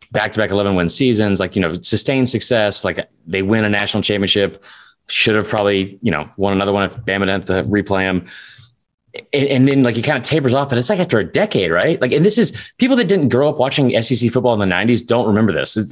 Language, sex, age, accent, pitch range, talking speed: English, male, 20-39, American, 100-130 Hz, 235 wpm